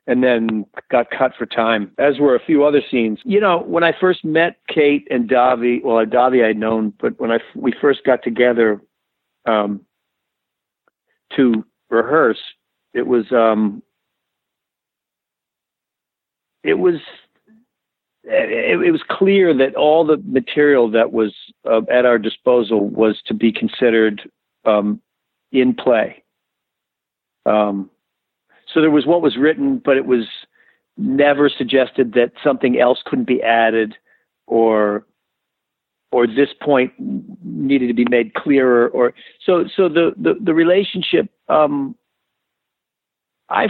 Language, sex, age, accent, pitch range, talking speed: English, male, 50-69, American, 115-150 Hz, 135 wpm